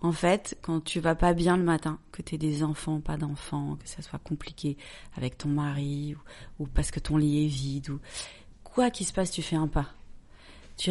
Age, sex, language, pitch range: 30-49, female, French, 170-215 Hz